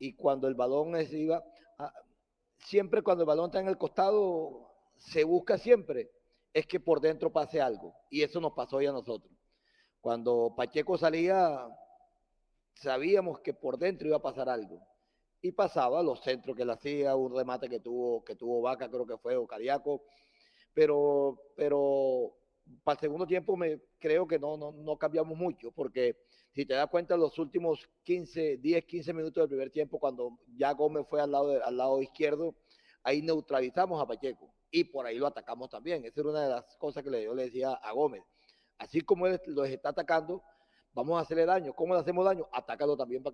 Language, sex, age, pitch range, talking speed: Spanish, male, 40-59, 135-180 Hz, 190 wpm